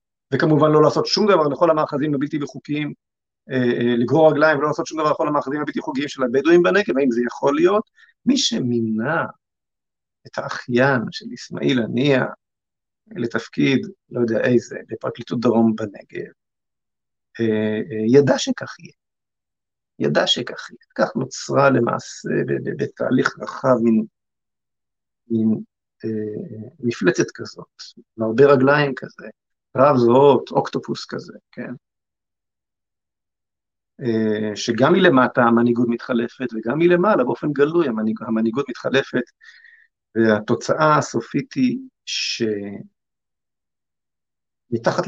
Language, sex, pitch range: Hebrew, male, 115-155 Hz